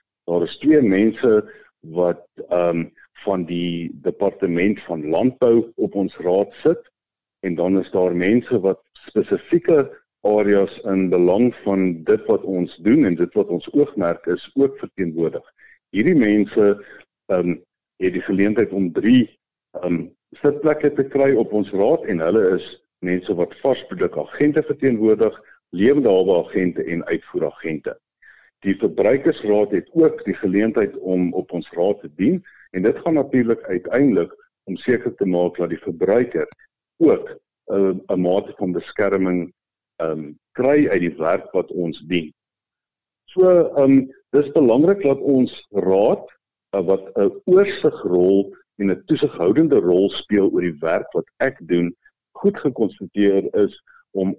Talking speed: 140 wpm